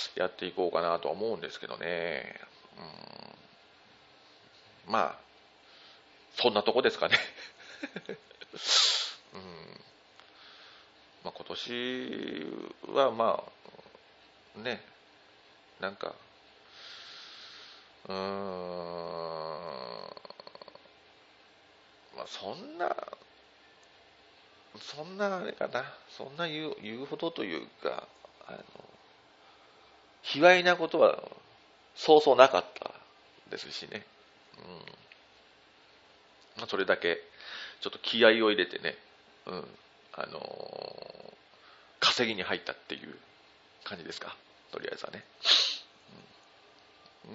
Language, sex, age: Japanese, male, 40-59